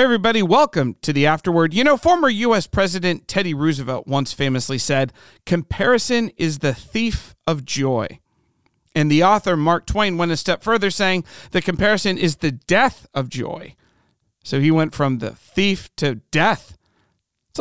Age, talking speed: 40-59, 160 wpm